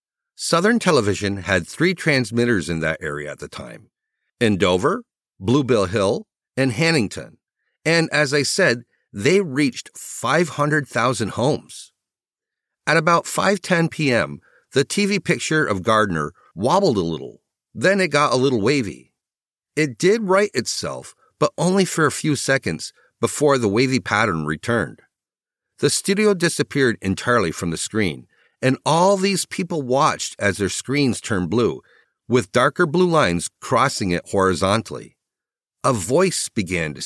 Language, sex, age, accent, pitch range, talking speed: English, male, 50-69, American, 100-170 Hz, 140 wpm